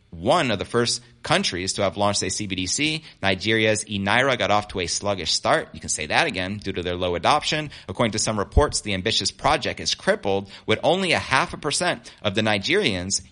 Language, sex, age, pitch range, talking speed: English, male, 30-49, 95-115 Hz, 205 wpm